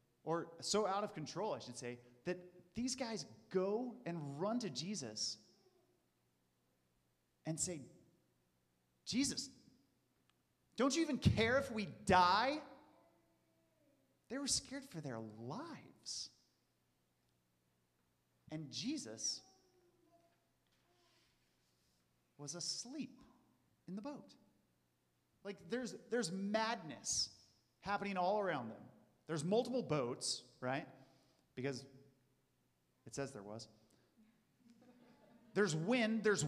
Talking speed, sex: 95 wpm, male